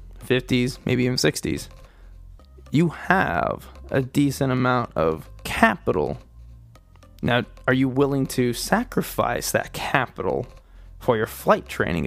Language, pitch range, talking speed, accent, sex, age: English, 95-155 Hz, 115 wpm, American, male, 20-39